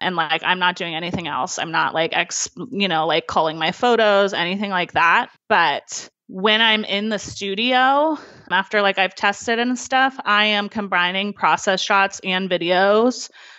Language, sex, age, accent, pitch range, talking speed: English, female, 30-49, American, 180-215 Hz, 170 wpm